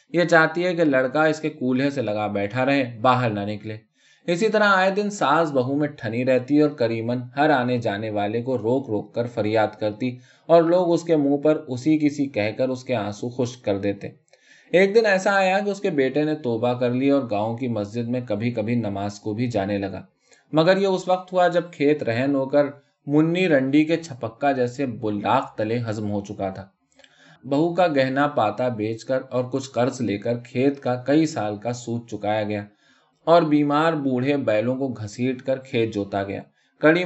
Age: 20-39